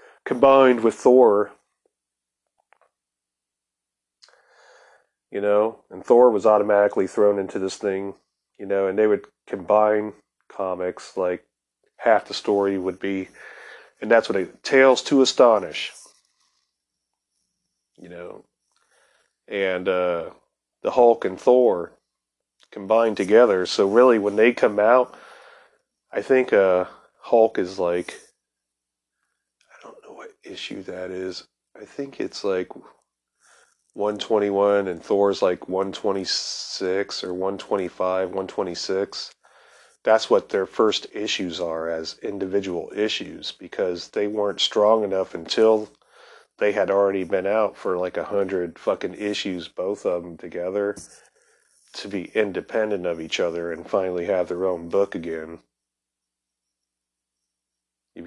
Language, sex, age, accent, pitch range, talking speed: English, male, 30-49, American, 85-105 Hz, 115 wpm